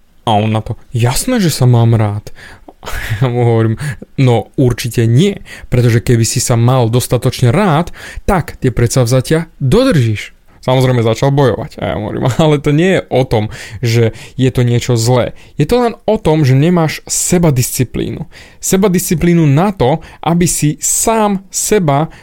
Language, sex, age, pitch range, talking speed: Slovak, male, 20-39, 125-160 Hz, 165 wpm